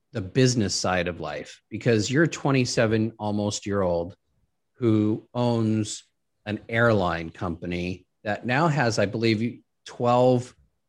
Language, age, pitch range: English, 30-49, 100-120 Hz